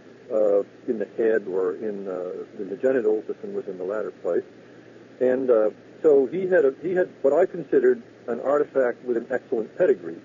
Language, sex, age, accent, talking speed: English, male, 50-69, American, 180 wpm